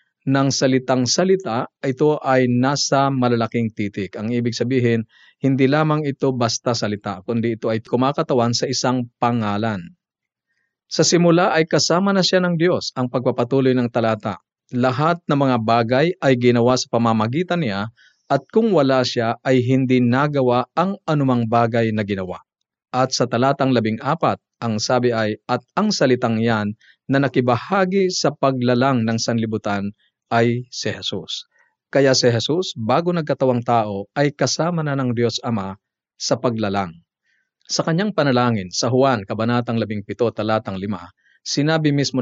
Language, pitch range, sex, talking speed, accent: Filipino, 115-140 Hz, male, 145 wpm, native